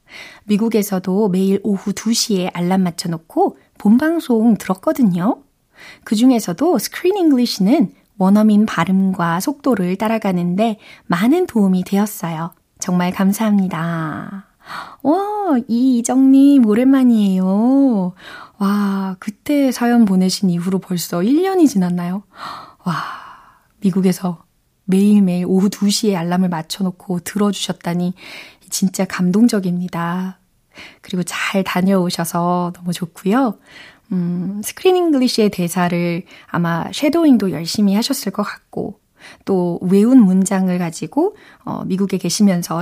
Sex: female